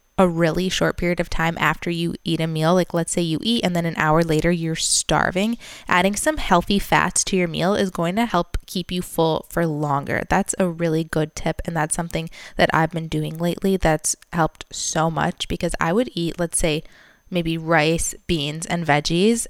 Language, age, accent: English, 20-39, American